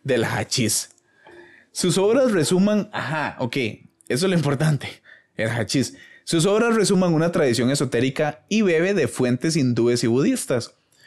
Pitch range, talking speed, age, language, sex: 115-165 Hz, 140 wpm, 20-39, Spanish, male